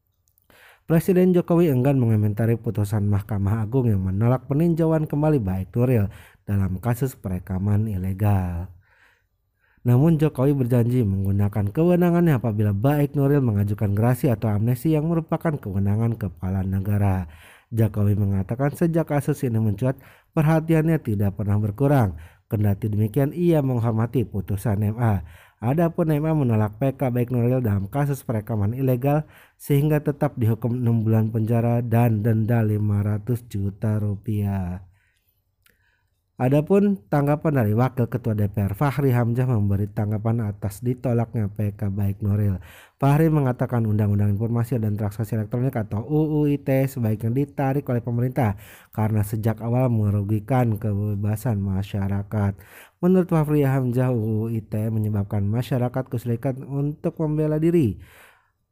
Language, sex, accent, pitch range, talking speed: Indonesian, male, native, 105-135 Hz, 120 wpm